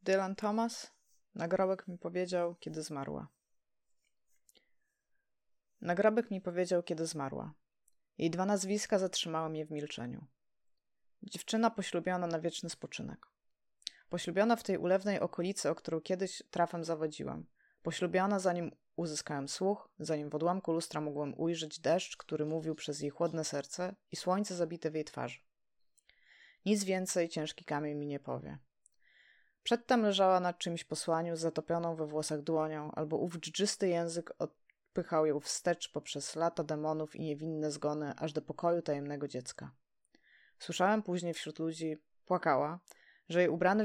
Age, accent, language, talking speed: 20-39, native, Polish, 135 wpm